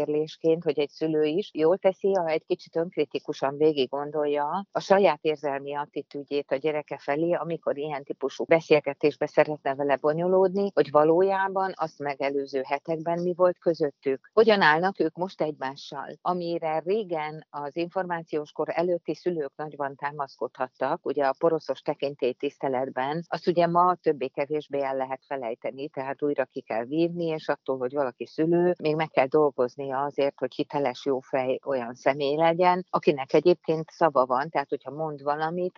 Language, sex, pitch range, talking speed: Hungarian, female, 140-175 Hz, 150 wpm